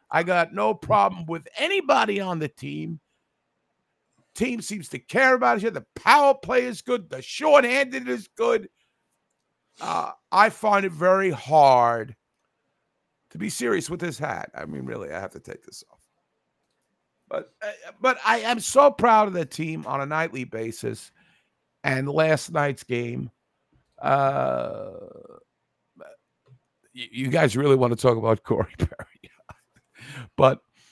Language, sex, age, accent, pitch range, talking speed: English, male, 50-69, American, 125-200 Hz, 145 wpm